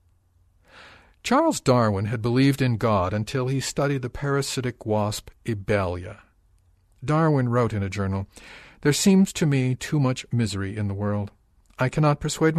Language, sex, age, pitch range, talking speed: English, male, 50-69, 100-130 Hz, 150 wpm